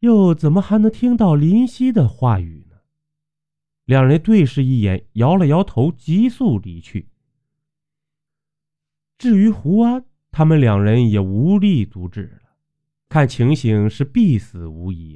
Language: Chinese